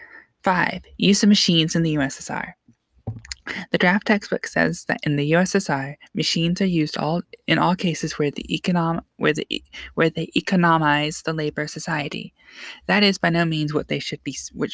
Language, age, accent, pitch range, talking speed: English, 20-39, American, 155-190 Hz, 145 wpm